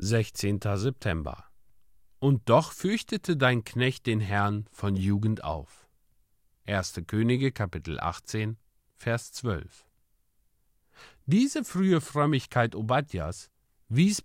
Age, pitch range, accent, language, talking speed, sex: 50-69, 105-155 Hz, German, German, 95 wpm, male